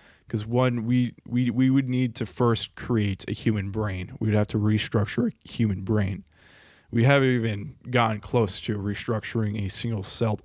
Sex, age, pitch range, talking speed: male, 20-39, 100-115 Hz, 170 wpm